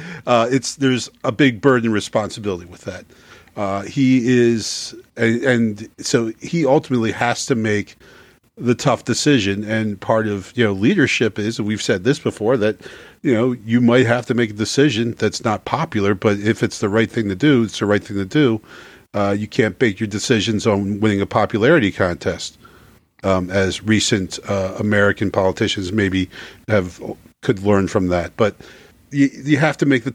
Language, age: English, 40-59